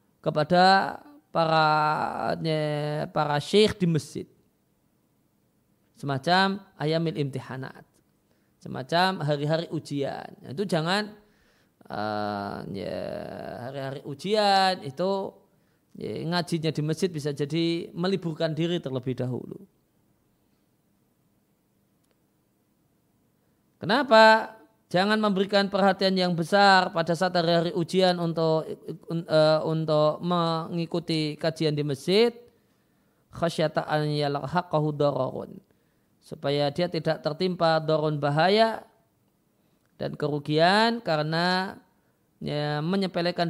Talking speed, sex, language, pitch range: 80 wpm, male, Indonesian, 150-190 Hz